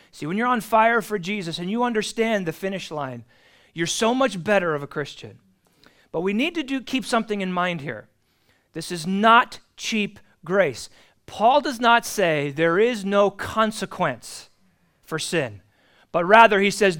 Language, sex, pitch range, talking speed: English, male, 160-220 Hz, 170 wpm